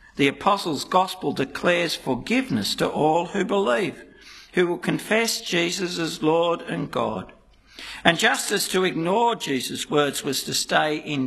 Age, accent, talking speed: 60-79, Australian, 150 wpm